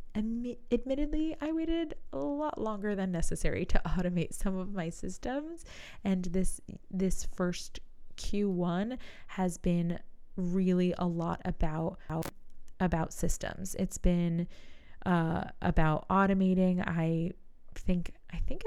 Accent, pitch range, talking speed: American, 175-215 Hz, 120 wpm